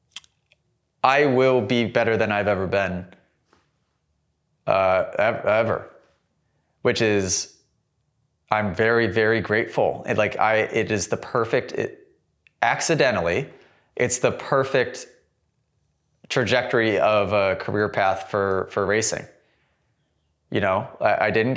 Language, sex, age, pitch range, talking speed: English, male, 20-39, 105-125 Hz, 115 wpm